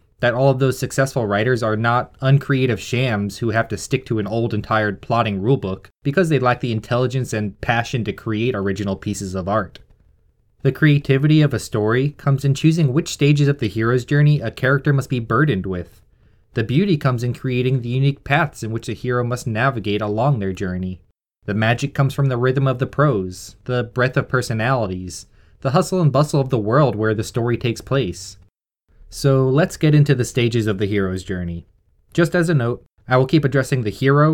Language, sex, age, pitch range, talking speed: English, male, 20-39, 105-135 Hz, 205 wpm